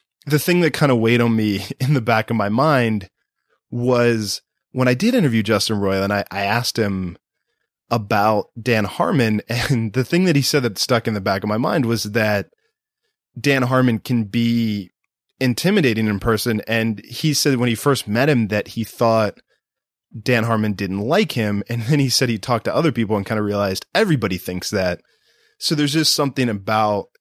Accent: American